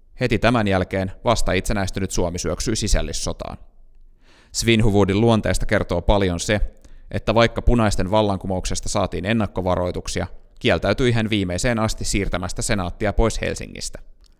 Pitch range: 90-115 Hz